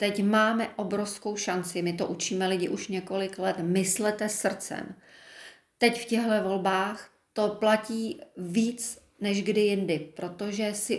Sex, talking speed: female, 135 wpm